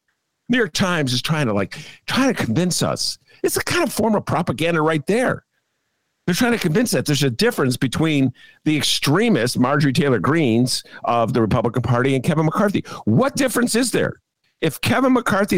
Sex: male